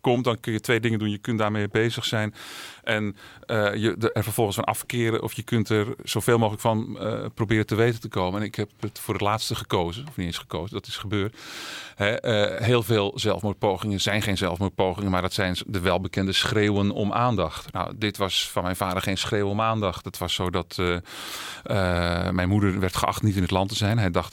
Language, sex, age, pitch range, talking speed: Dutch, male, 40-59, 100-120 Hz, 220 wpm